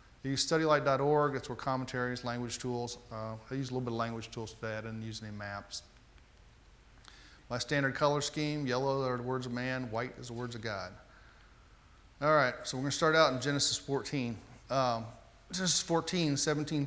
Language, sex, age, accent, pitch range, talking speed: English, male, 40-59, American, 115-140 Hz, 190 wpm